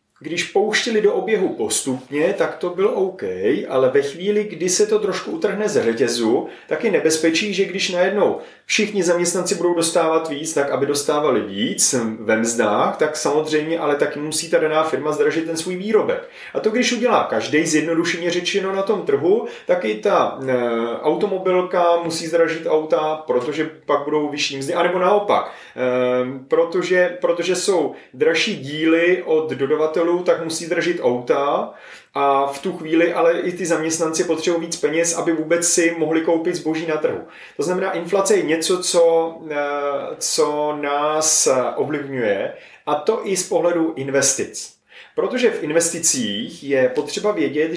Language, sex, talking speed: Czech, male, 155 wpm